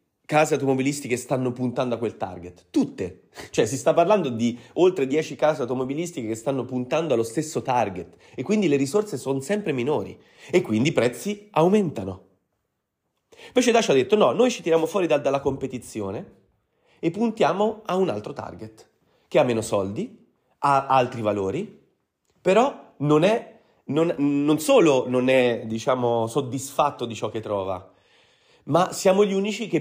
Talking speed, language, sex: 155 wpm, Italian, male